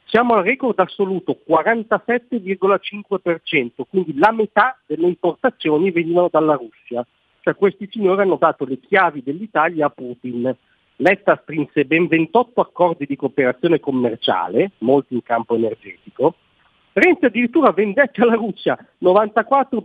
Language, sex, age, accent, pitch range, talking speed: Italian, male, 50-69, native, 135-205 Hz, 125 wpm